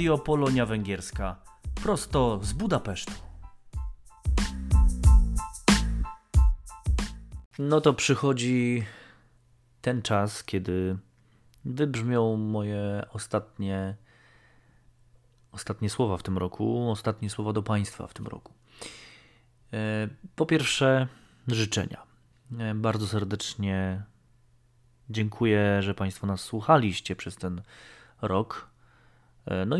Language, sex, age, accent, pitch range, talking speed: Polish, male, 30-49, native, 95-120 Hz, 80 wpm